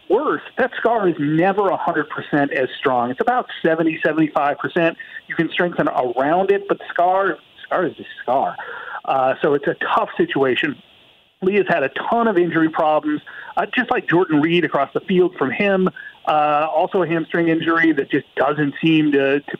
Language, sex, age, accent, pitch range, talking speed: English, male, 50-69, American, 155-200 Hz, 175 wpm